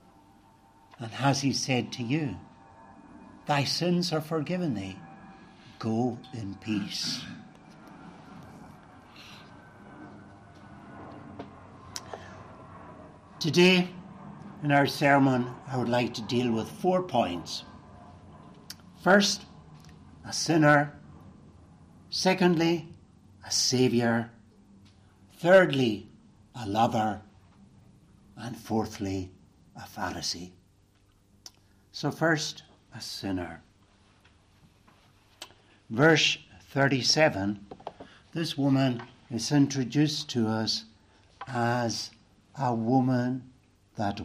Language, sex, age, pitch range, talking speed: English, male, 60-79, 100-140 Hz, 75 wpm